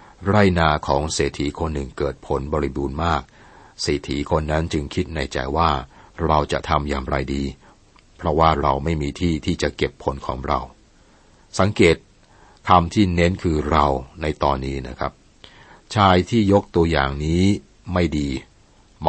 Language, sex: Thai, male